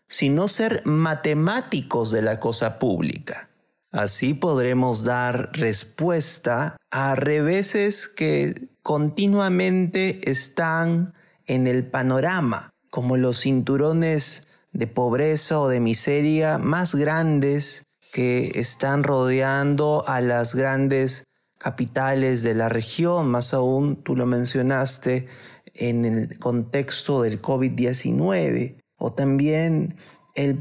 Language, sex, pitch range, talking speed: Spanish, male, 130-160 Hz, 100 wpm